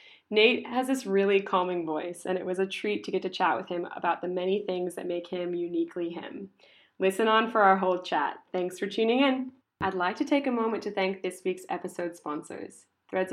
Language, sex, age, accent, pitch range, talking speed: English, female, 20-39, American, 180-210 Hz, 220 wpm